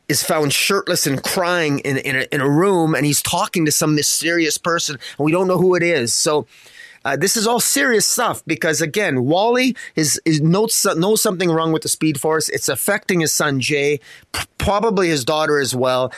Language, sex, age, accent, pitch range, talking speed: English, male, 30-49, American, 135-170 Hz, 210 wpm